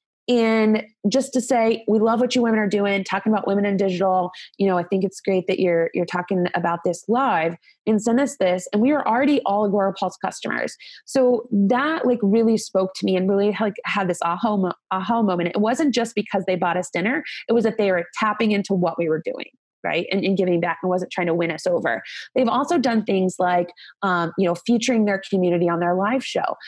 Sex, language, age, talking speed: female, English, 20-39, 230 wpm